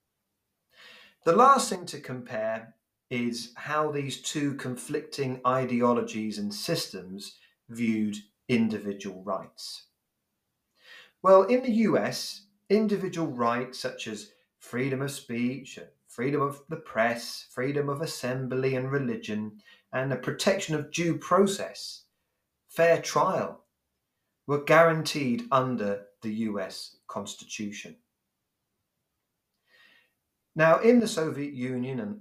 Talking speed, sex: 105 wpm, male